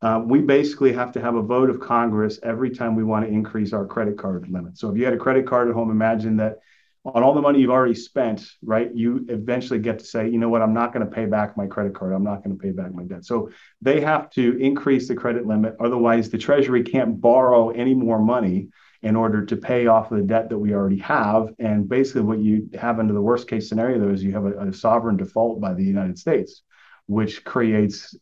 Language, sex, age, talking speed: English, male, 30-49, 240 wpm